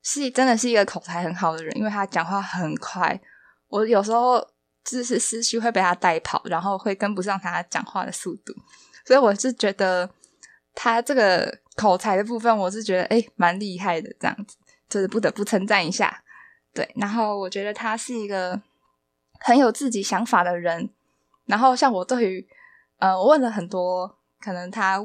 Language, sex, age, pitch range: Chinese, female, 10-29, 185-250 Hz